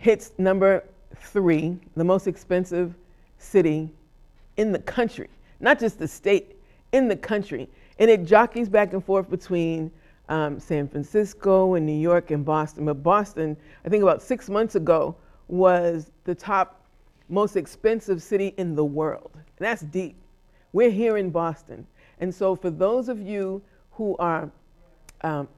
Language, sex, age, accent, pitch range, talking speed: English, female, 50-69, American, 170-210 Hz, 150 wpm